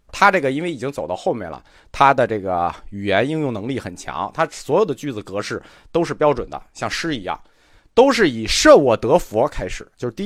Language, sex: Chinese, male